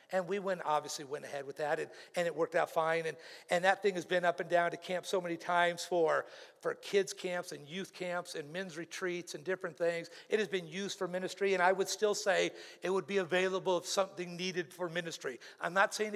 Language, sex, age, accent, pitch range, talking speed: English, male, 50-69, American, 180-285 Hz, 240 wpm